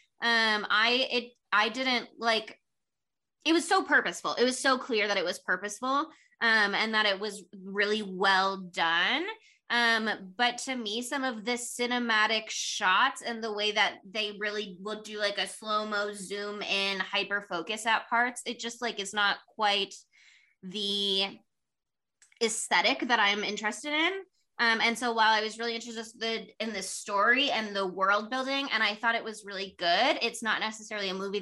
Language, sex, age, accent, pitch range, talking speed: English, female, 20-39, American, 200-240 Hz, 170 wpm